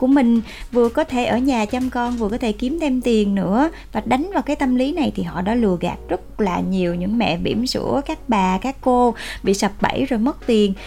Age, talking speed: 20-39, 250 wpm